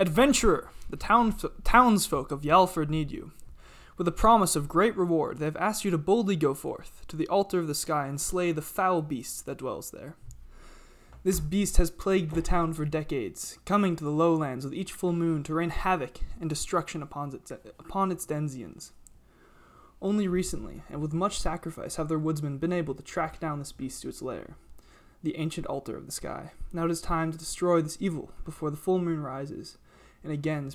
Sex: male